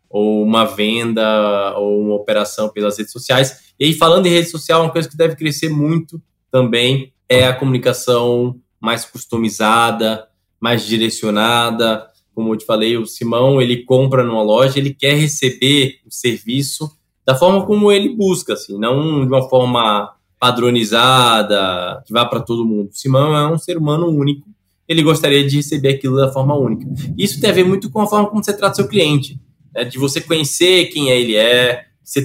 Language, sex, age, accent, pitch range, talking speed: Portuguese, male, 20-39, Brazilian, 115-160 Hz, 180 wpm